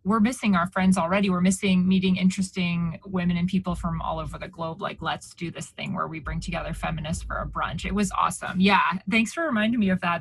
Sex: female